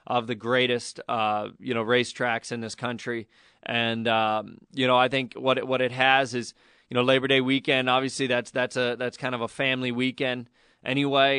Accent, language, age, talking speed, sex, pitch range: American, English, 20-39, 200 wpm, male, 120-130 Hz